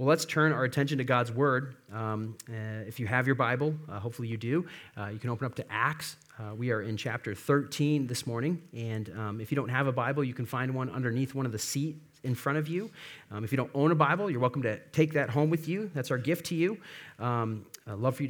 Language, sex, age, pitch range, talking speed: English, male, 40-59, 125-155 Hz, 260 wpm